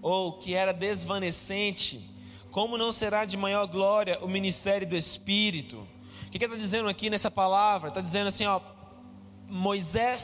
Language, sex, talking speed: Portuguese, male, 160 wpm